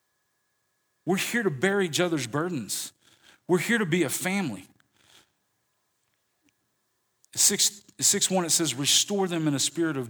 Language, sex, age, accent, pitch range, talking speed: English, male, 40-59, American, 130-170 Hz, 150 wpm